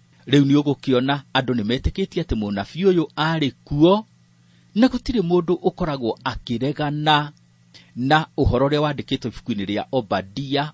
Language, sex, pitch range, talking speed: English, male, 115-185 Hz, 110 wpm